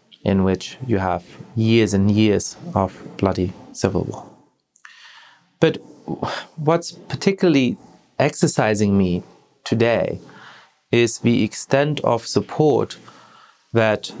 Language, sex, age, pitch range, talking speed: English, male, 30-49, 105-140 Hz, 95 wpm